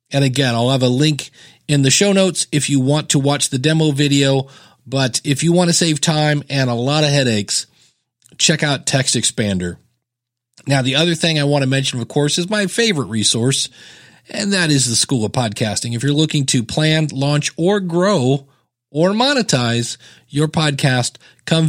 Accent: American